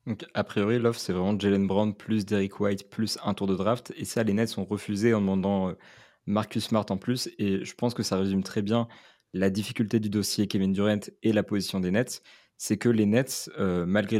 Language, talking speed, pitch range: French, 225 wpm, 100-115 Hz